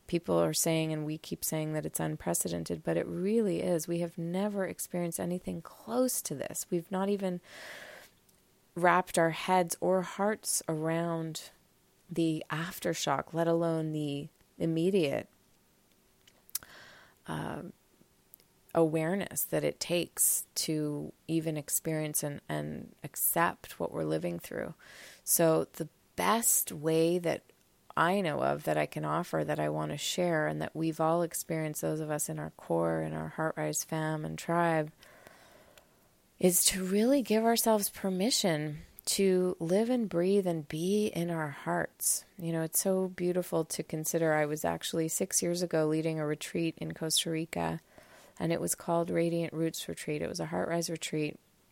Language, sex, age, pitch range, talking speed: English, female, 30-49, 155-175 Hz, 155 wpm